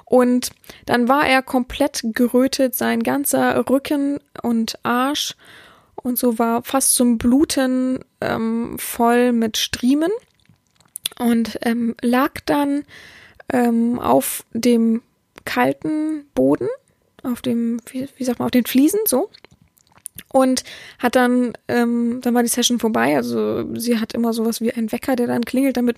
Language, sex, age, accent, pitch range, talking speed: German, female, 20-39, German, 230-270 Hz, 140 wpm